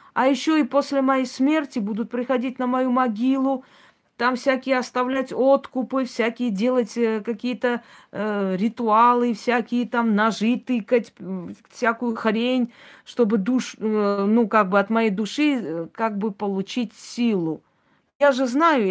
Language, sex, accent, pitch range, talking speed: Russian, female, native, 200-250 Hz, 135 wpm